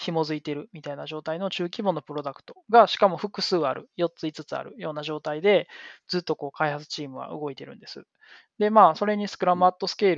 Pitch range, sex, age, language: 145-195 Hz, male, 20-39, Japanese